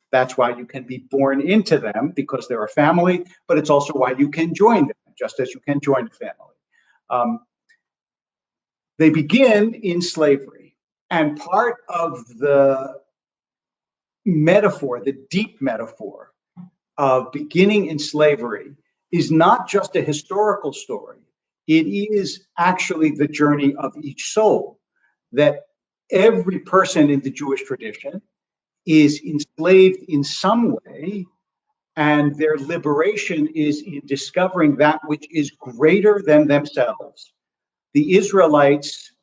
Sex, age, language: male, 50-69, English